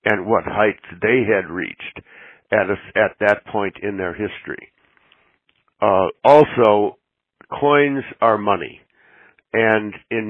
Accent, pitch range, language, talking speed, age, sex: American, 100-115 Hz, English, 120 wpm, 60-79, male